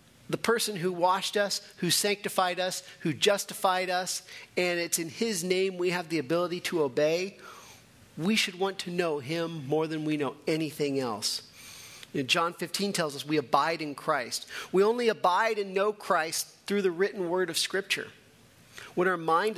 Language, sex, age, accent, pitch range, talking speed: English, male, 40-59, American, 150-195 Hz, 175 wpm